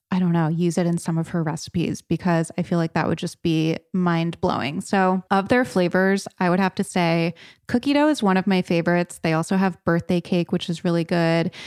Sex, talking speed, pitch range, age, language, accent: female, 225 wpm, 170-200 Hz, 20-39, English, American